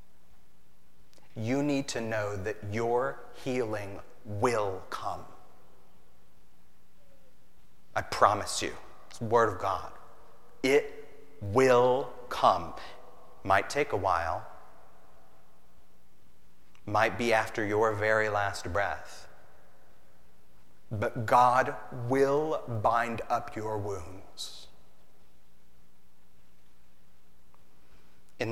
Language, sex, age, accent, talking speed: English, male, 40-59, American, 80 wpm